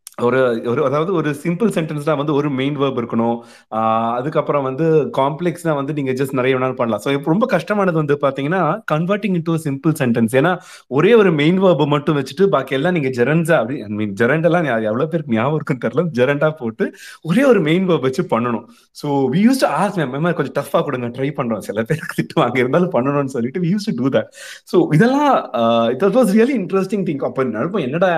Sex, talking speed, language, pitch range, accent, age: male, 150 wpm, Tamil, 130-185 Hz, native, 30-49